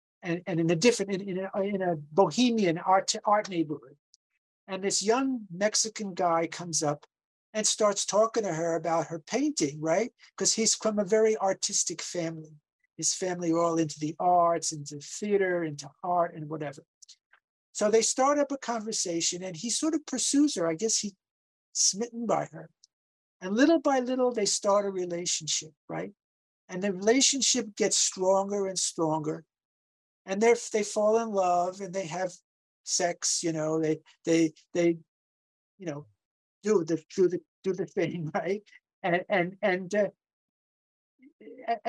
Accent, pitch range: American, 165-215 Hz